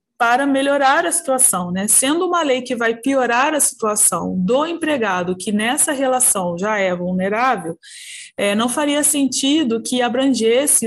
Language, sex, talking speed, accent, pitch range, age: Portuguese, female, 145 wpm, Brazilian, 210-265 Hz, 20-39